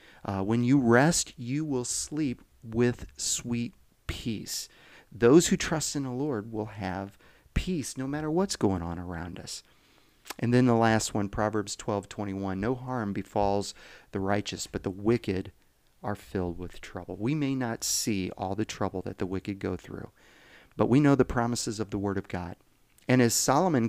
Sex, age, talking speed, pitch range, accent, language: male, 40-59, 180 wpm, 95-125 Hz, American, English